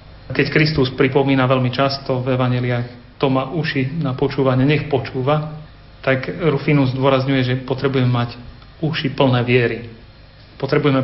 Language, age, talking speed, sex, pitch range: Slovak, 40-59, 130 wpm, male, 125-150 Hz